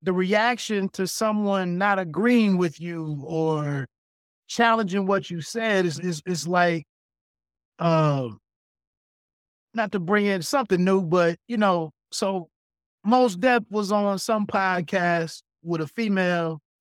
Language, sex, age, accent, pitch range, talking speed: English, male, 30-49, American, 175-220 Hz, 130 wpm